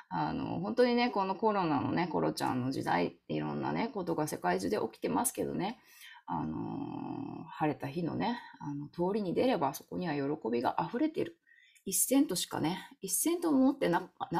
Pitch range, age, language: 150-255 Hz, 20-39, Japanese